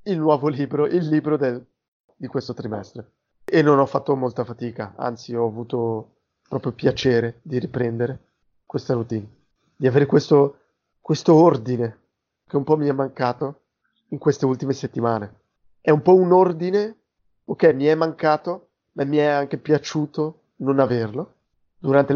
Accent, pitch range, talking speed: native, 125-155 Hz, 155 wpm